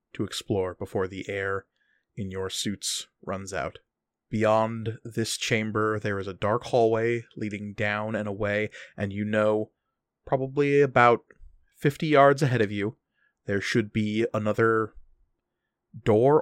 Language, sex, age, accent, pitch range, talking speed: English, male, 30-49, American, 100-115 Hz, 135 wpm